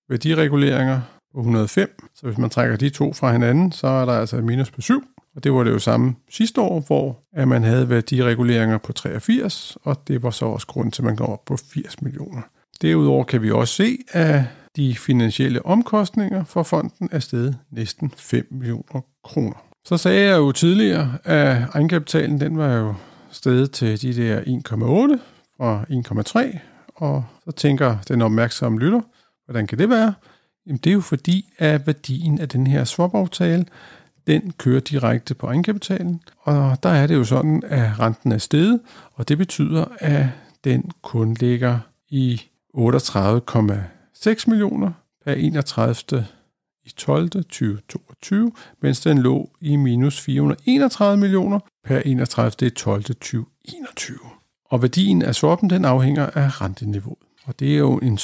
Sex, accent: male, native